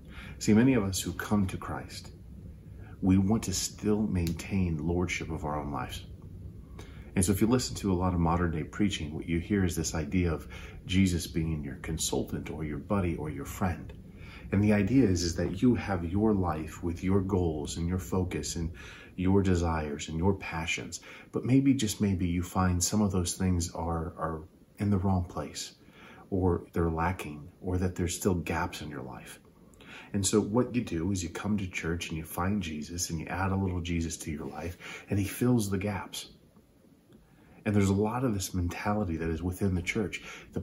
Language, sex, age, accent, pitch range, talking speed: English, male, 40-59, American, 85-100 Hz, 200 wpm